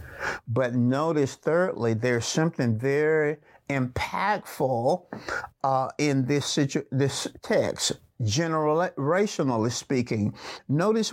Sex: male